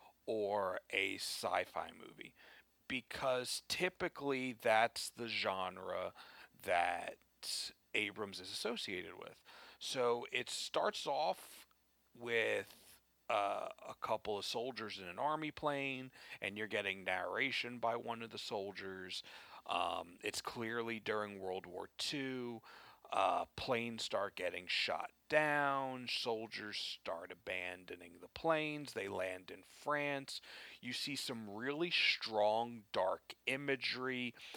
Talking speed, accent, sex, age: 115 wpm, American, male, 40-59